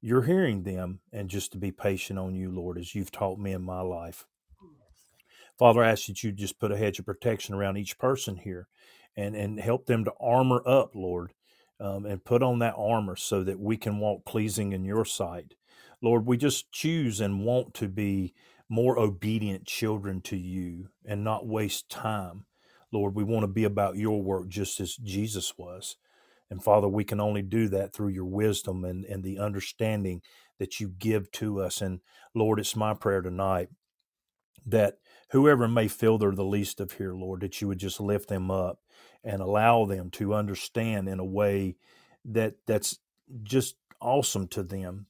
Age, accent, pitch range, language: 40-59, American, 95-115 Hz, English